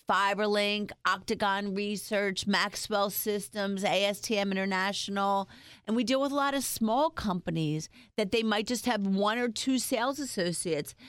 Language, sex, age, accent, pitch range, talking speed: English, female, 40-59, American, 190-230 Hz, 140 wpm